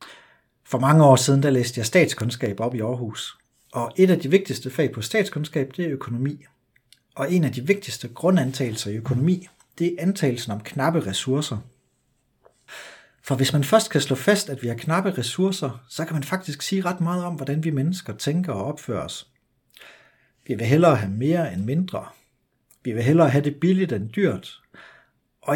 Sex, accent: male, native